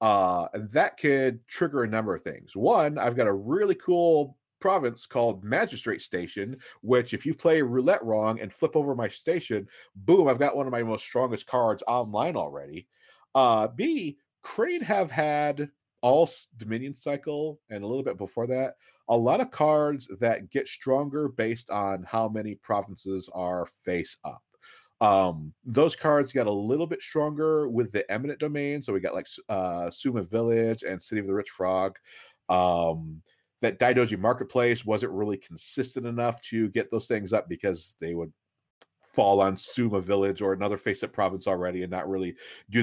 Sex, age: male, 40-59